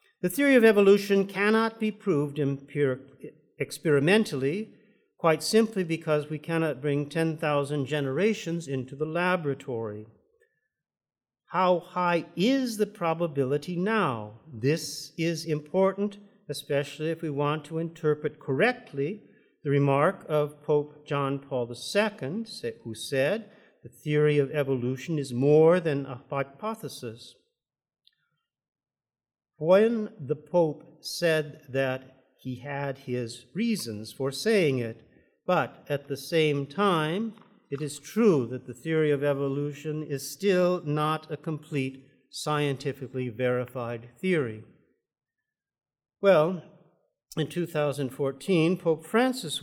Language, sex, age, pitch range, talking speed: English, male, 50-69, 140-180 Hz, 110 wpm